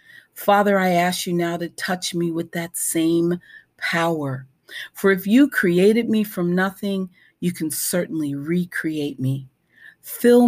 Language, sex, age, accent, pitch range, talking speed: English, female, 40-59, American, 165-205 Hz, 145 wpm